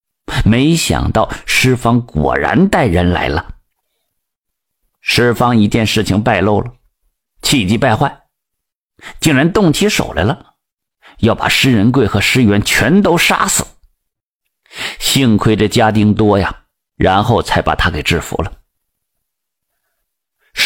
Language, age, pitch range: Chinese, 50-69, 95-130 Hz